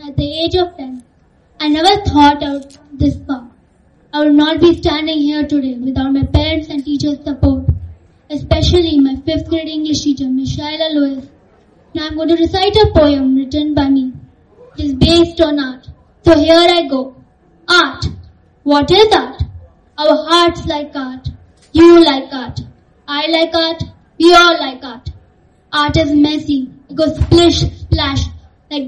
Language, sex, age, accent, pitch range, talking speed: English, female, 20-39, Indian, 275-315 Hz, 160 wpm